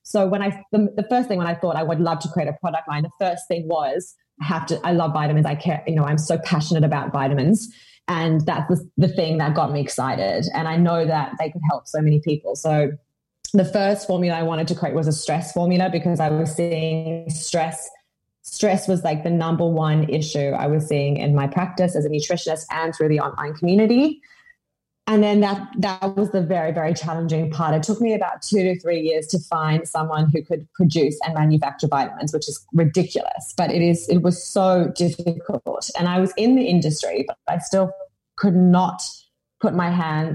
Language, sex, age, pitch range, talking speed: English, female, 20-39, 155-185 Hz, 215 wpm